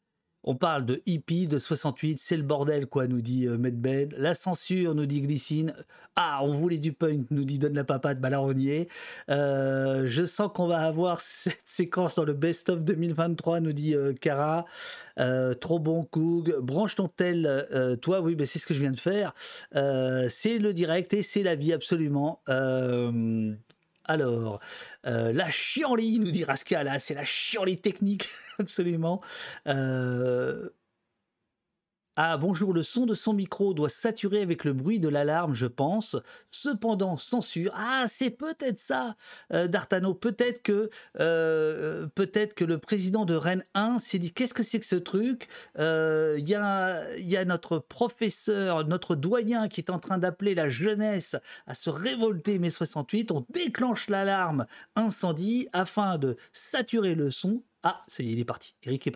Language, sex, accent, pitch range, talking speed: French, male, French, 145-195 Hz, 170 wpm